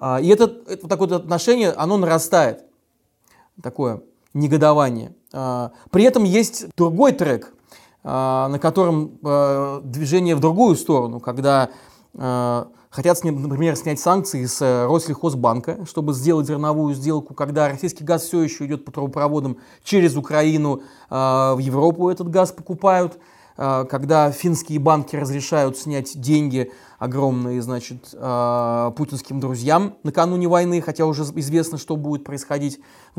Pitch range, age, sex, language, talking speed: 140-180 Hz, 20-39, male, Russian, 120 wpm